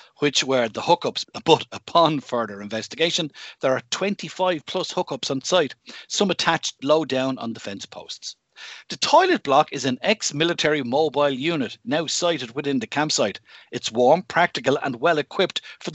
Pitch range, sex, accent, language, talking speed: 125-170 Hz, male, Irish, English, 155 wpm